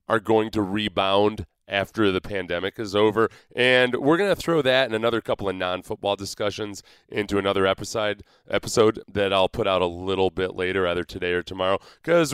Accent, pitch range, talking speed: American, 100-135 Hz, 180 wpm